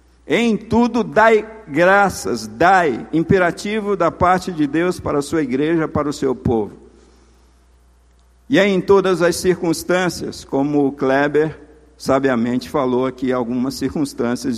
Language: Portuguese